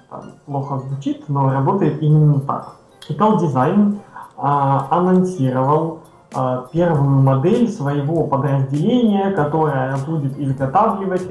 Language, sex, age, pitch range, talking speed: Russian, male, 20-39, 135-160 Hz, 90 wpm